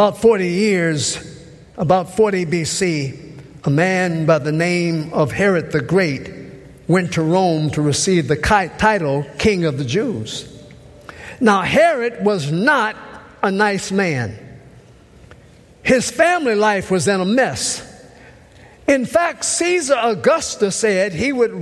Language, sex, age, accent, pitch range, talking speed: English, male, 50-69, American, 180-265 Hz, 130 wpm